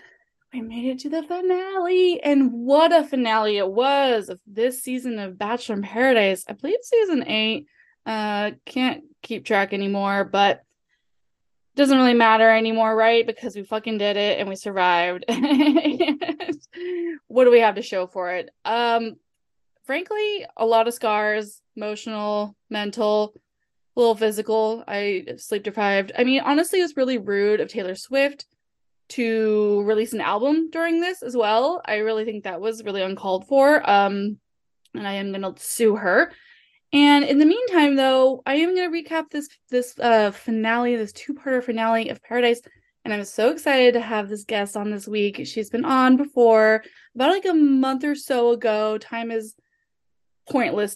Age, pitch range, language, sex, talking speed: 20-39, 210-285 Hz, English, female, 165 wpm